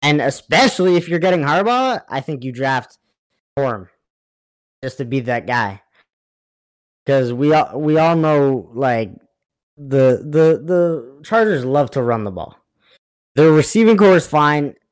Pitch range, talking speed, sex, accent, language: 125-155 Hz, 150 wpm, male, American, English